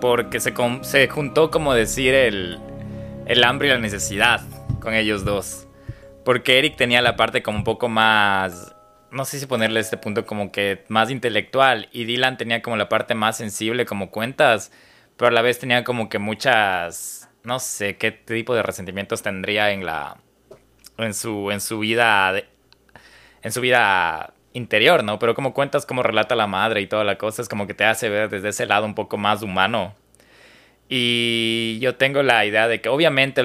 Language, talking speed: Spanish, 190 wpm